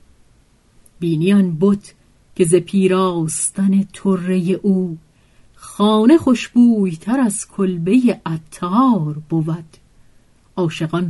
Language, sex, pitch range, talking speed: Persian, female, 165-230 Hz, 75 wpm